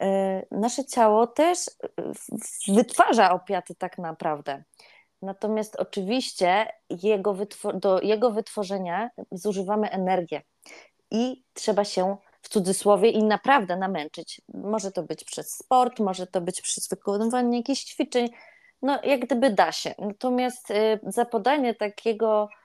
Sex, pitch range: female, 195-240 Hz